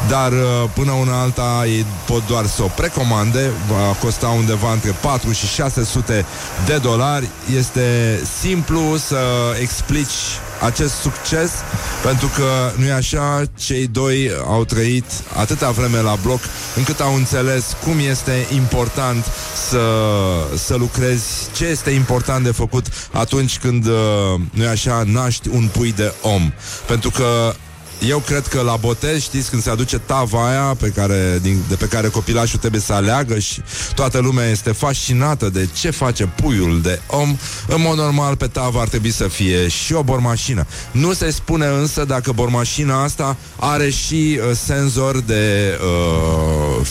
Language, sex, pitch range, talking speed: Romanian, male, 105-130 Hz, 150 wpm